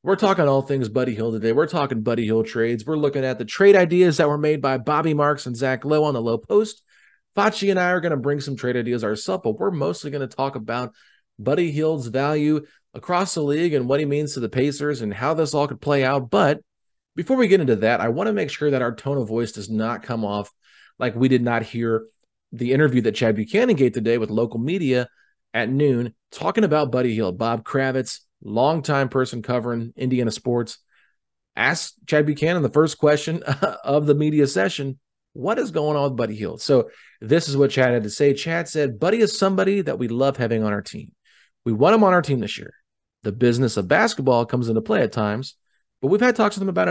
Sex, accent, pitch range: male, American, 120-160 Hz